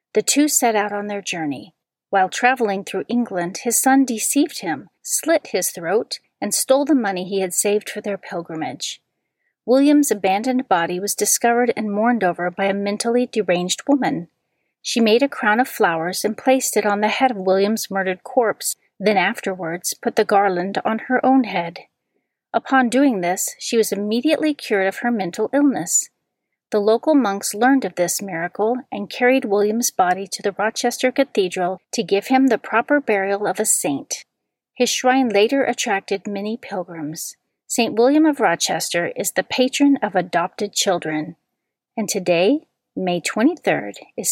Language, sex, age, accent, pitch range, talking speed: English, female, 40-59, American, 195-255 Hz, 165 wpm